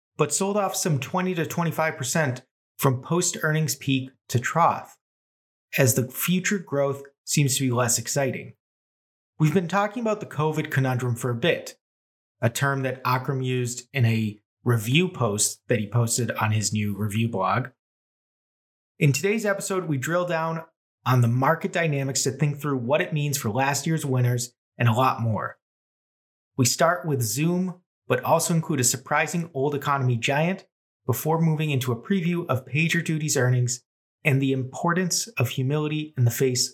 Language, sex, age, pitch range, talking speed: English, male, 30-49, 125-155 Hz, 165 wpm